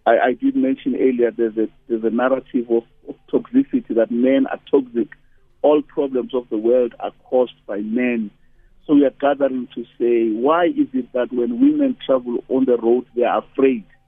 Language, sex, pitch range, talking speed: English, male, 120-160 Hz, 190 wpm